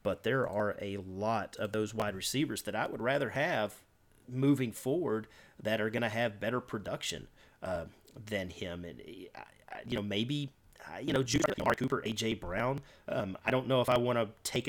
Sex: male